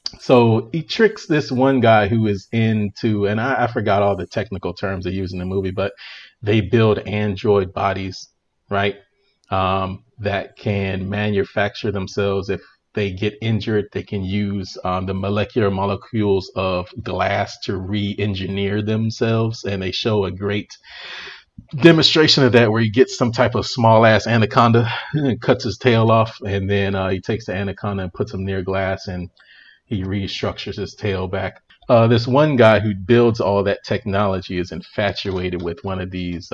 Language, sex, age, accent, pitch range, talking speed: English, male, 30-49, American, 95-115 Hz, 170 wpm